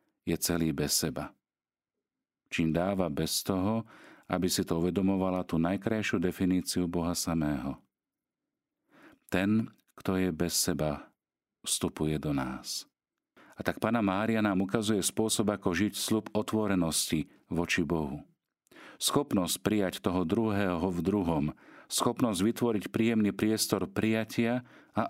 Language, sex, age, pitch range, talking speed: Slovak, male, 40-59, 85-110 Hz, 115 wpm